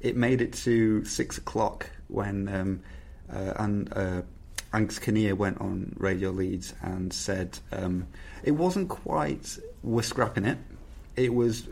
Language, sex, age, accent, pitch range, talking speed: English, male, 30-49, British, 90-105 Hz, 140 wpm